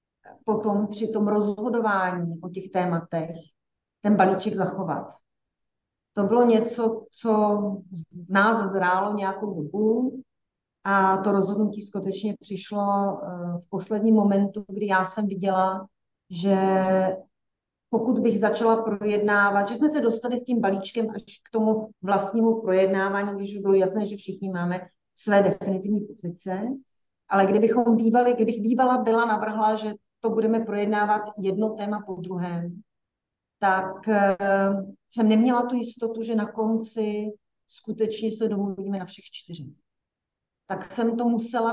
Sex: female